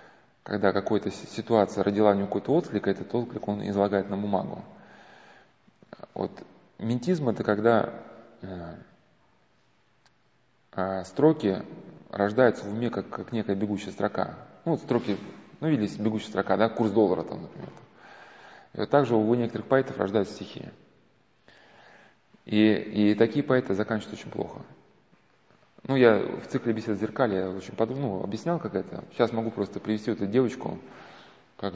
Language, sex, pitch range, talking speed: Russian, male, 100-120 Hz, 145 wpm